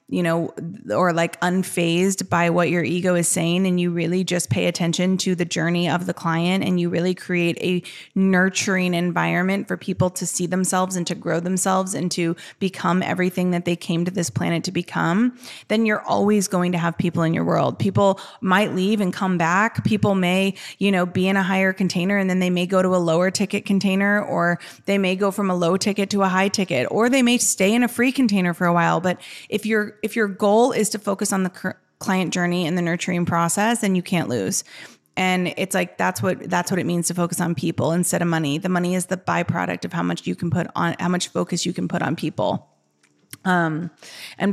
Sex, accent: female, American